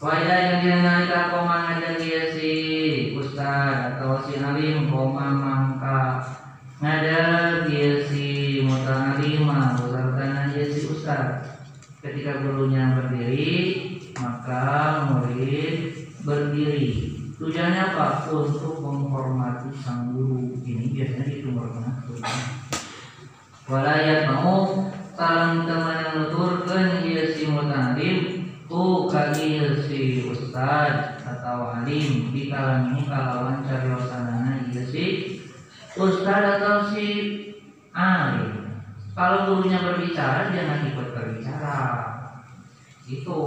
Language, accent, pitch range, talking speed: Indonesian, native, 130-160 Hz, 95 wpm